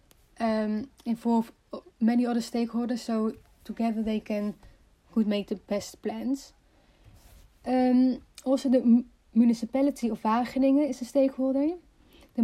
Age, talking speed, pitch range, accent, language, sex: 30-49, 120 wpm, 220-260 Hz, Dutch, English, female